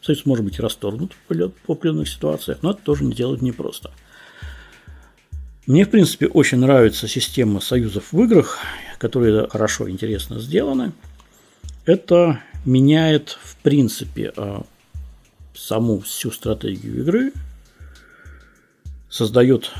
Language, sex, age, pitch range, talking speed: Russian, male, 50-69, 95-125 Hz, 105 wpm